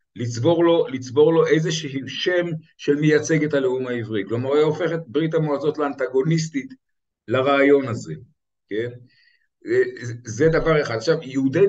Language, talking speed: Hebrew, 130 wpm